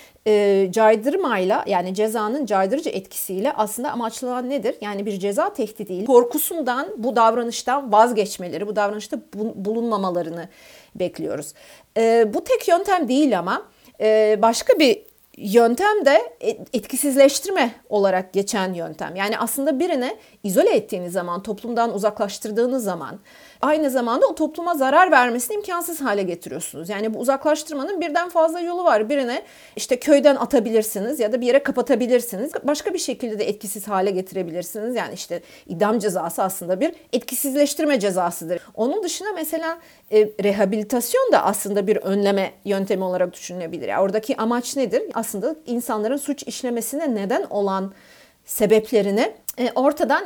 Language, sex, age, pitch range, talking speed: Turkish, female, 40-59, 200-275 Hz, 130 wpm